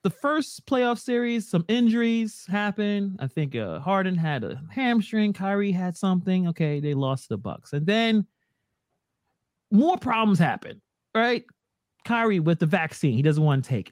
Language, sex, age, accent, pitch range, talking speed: English, male, 30-49, American, 155-240 Hz, 160 wpm